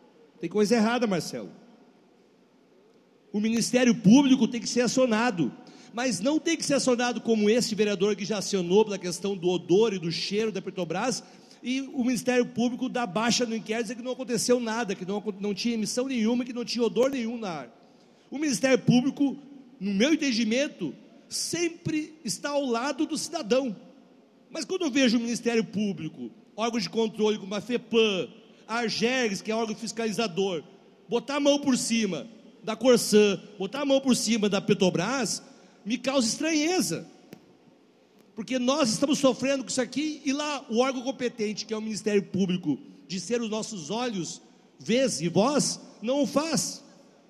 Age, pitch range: 50-69, 215-260 Hz